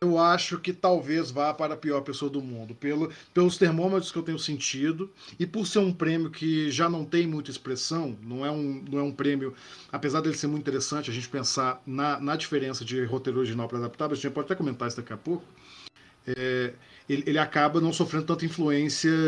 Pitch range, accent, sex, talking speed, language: 135-165 Hz, Brazilian, male, 220 wpm, Portuguese